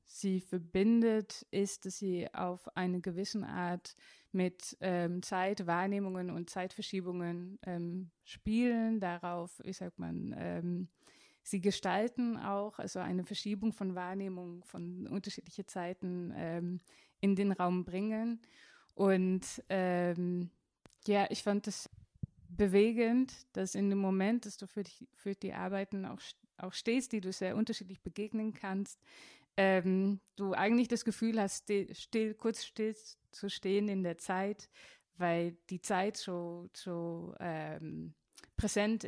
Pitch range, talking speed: 180-205 Hz, 135 wpm